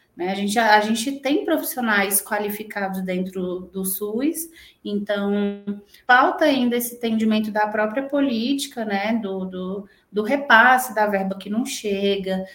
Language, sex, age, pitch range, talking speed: Portuguese, female, 20-39, 185-220 Hz, 135 wpm